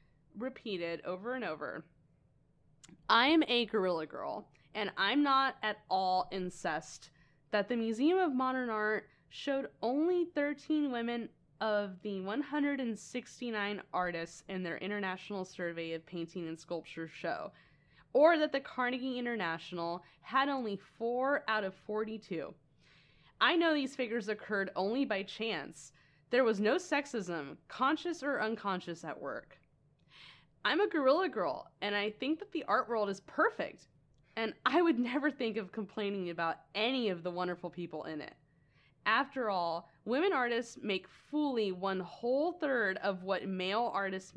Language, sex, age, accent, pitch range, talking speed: English, female, 10-29, American, 170-260 Hz, 145 wpm